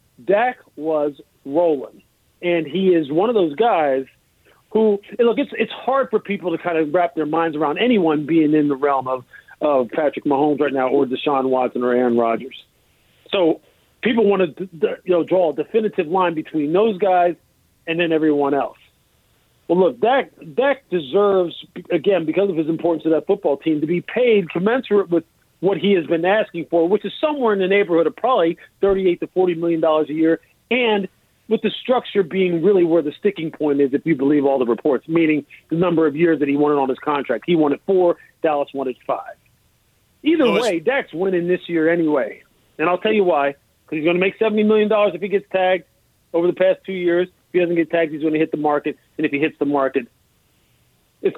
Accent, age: American, 40-59